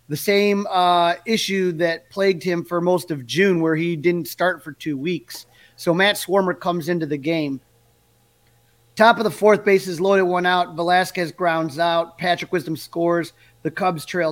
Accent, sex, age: American, male, 30-49